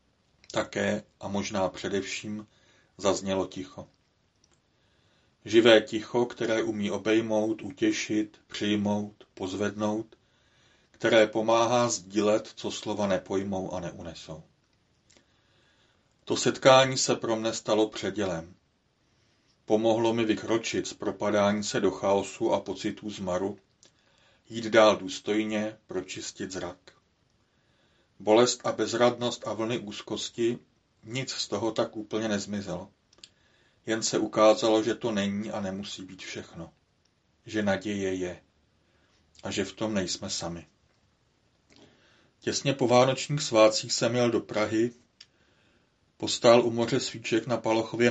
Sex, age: male, 40-59